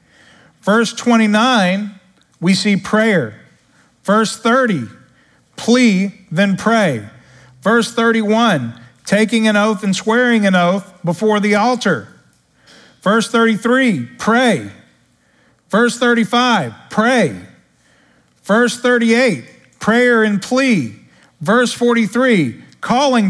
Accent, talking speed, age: American, 95 wpm, 40-59